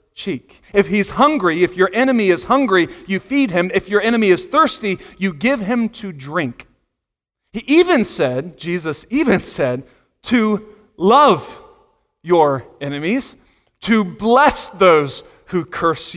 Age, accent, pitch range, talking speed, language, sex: 30-49, American, 175-250 Hz, 135 wpm, English, male